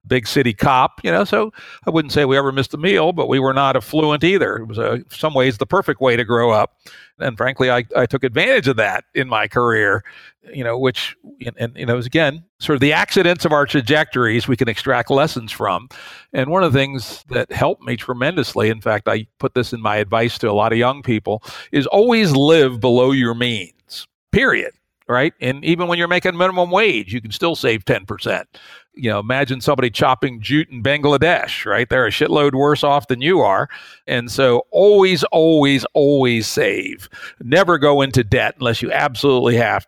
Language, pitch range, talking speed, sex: English, 115-145 Hz, 210 wpm, male